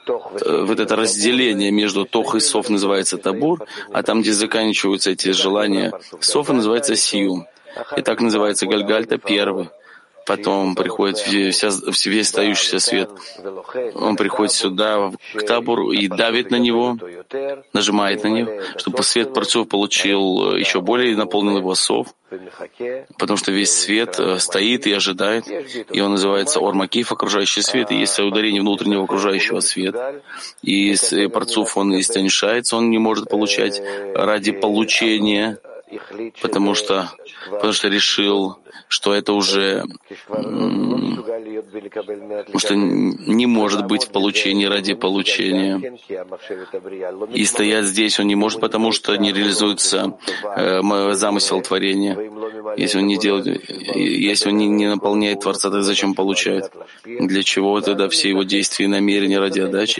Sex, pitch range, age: male, 100-110 Hz, 20-39